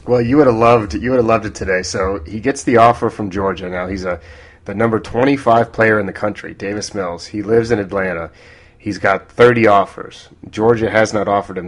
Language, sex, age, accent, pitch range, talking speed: English, male, 30-49, American, 95-110 Hz, 225 wpm